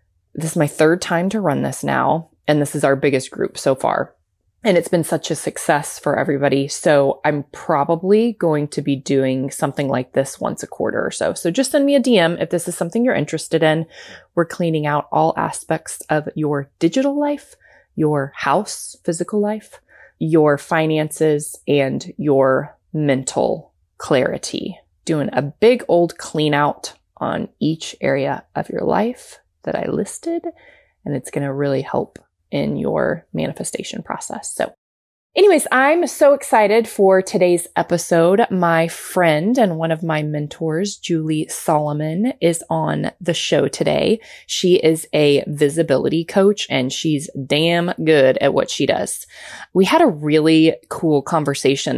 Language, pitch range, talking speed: English, 145-185 Hz, 160 wpm